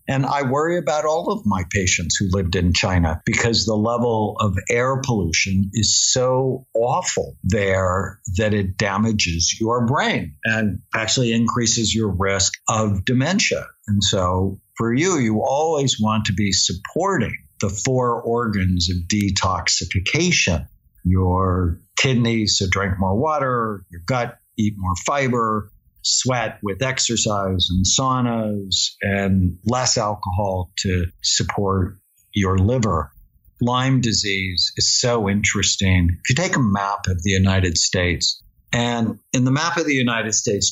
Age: 60-79